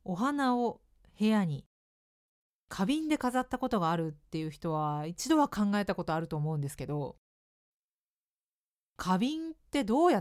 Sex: female